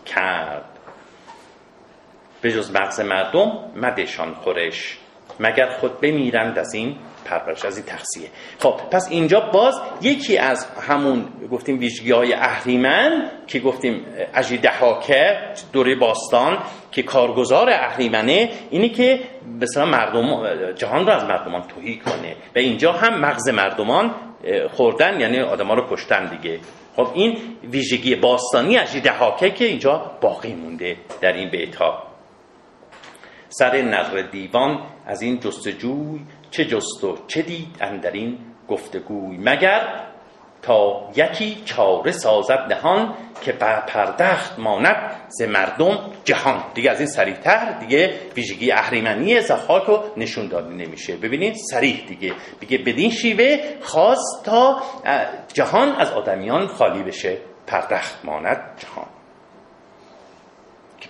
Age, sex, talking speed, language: 40-59, male, 120 wpm, Persian